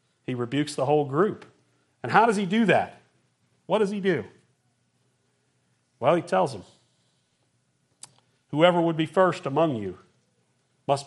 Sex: male